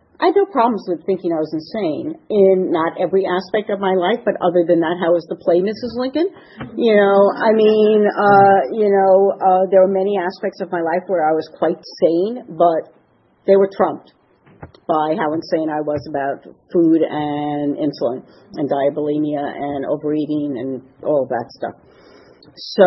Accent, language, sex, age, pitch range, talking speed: American, English, female, 50-69, 155-195 Hz, 180 wpm